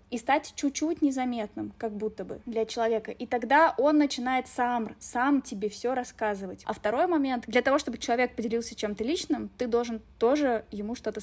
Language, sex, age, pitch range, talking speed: Russian, female, 20-39, 220-260 Hz, 175 wpm